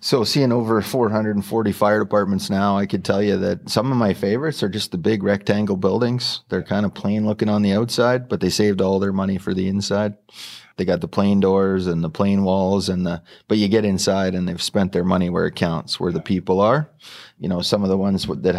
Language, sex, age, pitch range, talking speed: English, male, 30-49, 90-105 Hz, 235 wpm